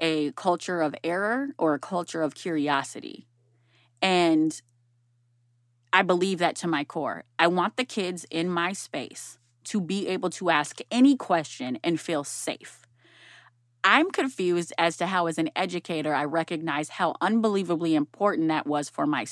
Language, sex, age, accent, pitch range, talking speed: English, female, 20-39, American, 150-185 Hz, 155 wpm